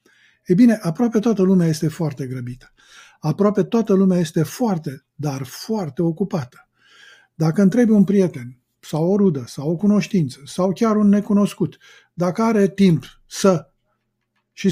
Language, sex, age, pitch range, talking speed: Romanian, male, 50-69, 150-190 Hz, 145 wpm